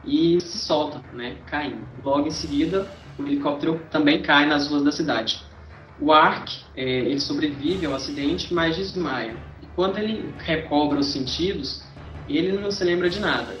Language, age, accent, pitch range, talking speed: Portuguese, 20-39, Brazilian, 135-180 Hz, 165 wpm